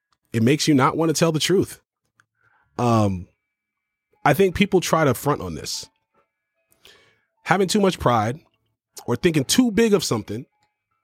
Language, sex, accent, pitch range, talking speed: English, male, American, 130-190 Hz, 150 wpm